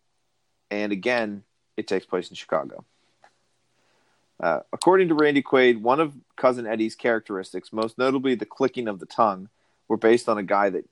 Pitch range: 105-125 Hz